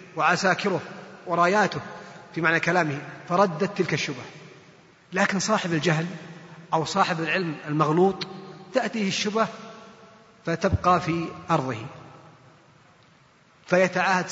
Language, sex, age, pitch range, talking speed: Arabic, male, 30-49, 160-190 Hz, 90 wpm